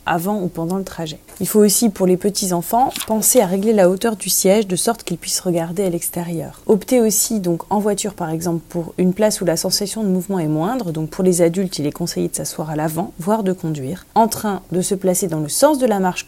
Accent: French